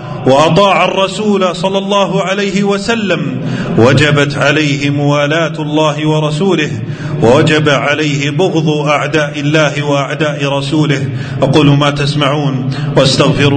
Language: Arabic